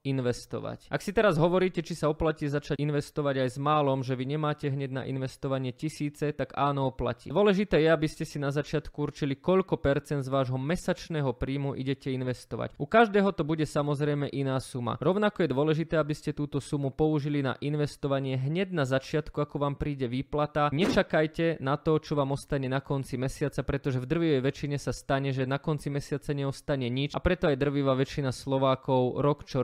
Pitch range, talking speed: 135-150 Hz, 185 wpm